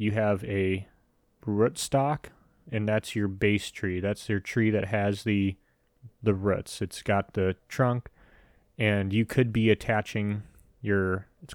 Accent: American